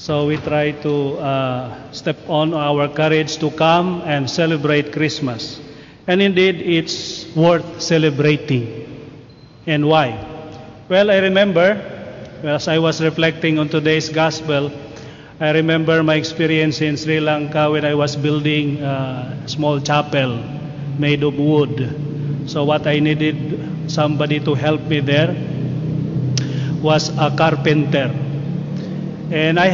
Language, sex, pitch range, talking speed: Indonesian, male, 145-160 Hz, 125 wpm